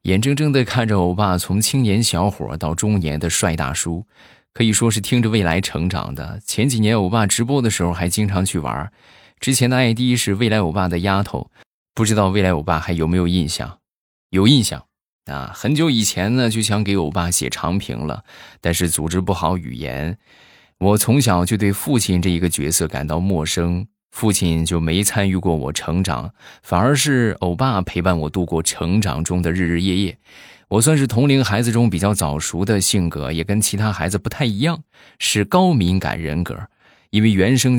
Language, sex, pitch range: Chinese, male, 85-110 Hz